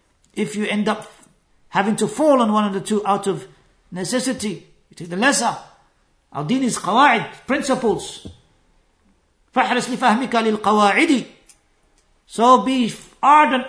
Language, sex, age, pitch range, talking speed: English, male, 50-69, 185-235 Hz, 120 wpm